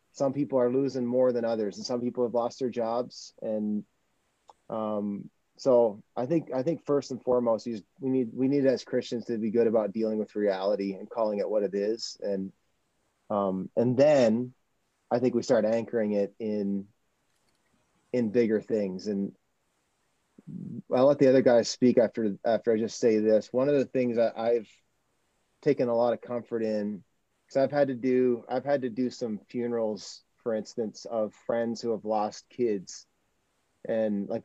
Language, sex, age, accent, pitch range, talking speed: English, male, 30-49, American, 105-130 Hz, 180 wpm